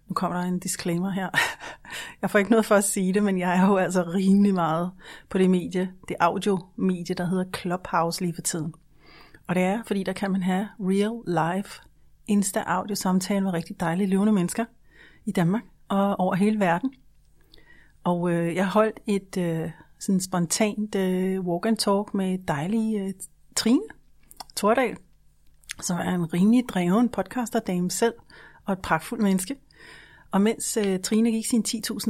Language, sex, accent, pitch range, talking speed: Danish, female, native, 180-215 Hz, 170 wpm